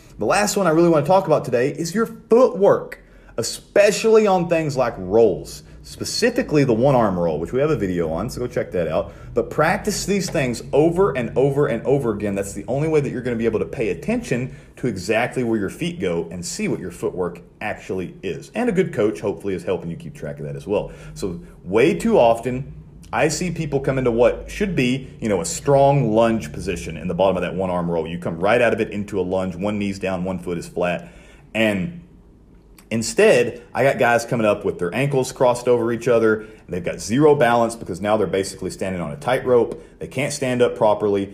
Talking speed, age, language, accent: 230 wpm, 40-59, English, American